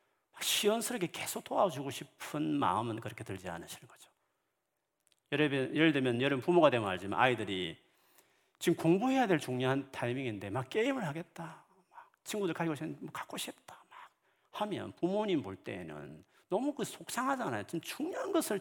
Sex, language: male, Korean